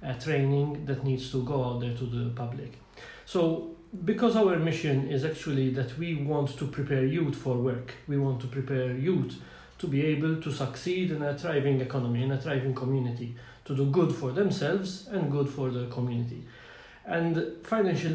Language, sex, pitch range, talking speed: English, male, 130-165 Hz, 180 wpm